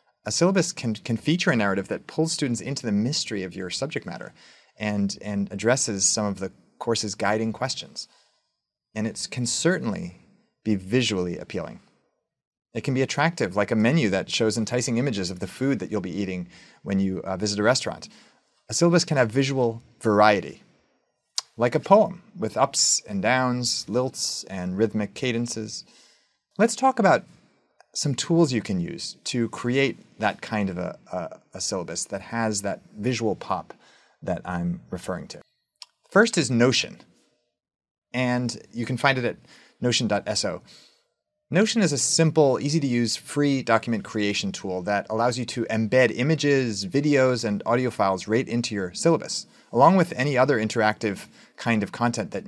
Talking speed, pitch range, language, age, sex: 165 wpm, 105-145 Hz, English, 30-49, male